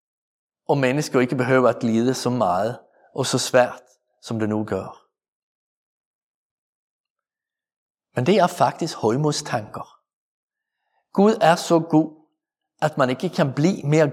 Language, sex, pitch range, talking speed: Danish, male, 135-170 Hz, 125 wpm